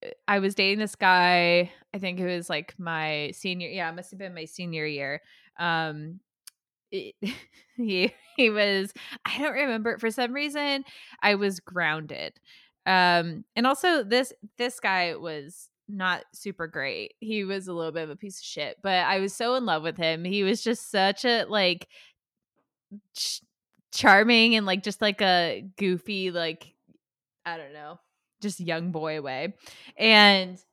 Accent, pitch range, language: American, 175-215 Hz, English